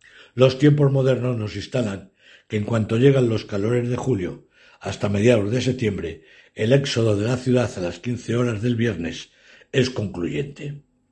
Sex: male